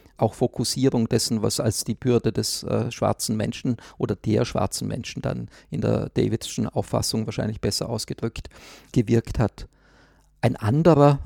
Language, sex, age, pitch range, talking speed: English, male, 50-69, 115-135 Hz, 145 wpm